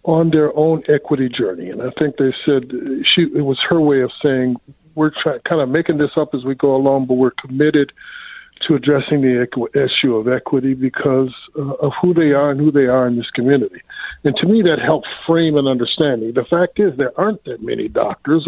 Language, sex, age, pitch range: English, male, 50-69, 130-155 Hz